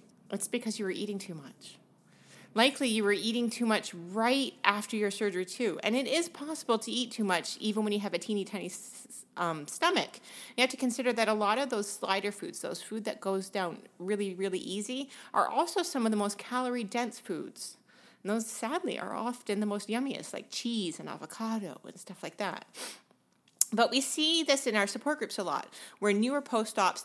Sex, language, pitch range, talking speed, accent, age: female, English, 205-265 Hz, 200 wpm, American, 30-49